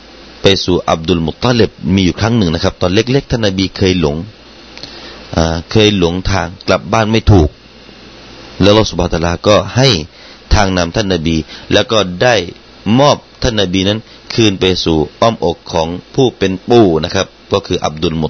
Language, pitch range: Thai, 85-110 Hz